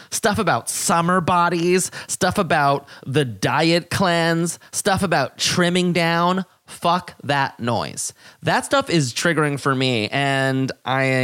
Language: English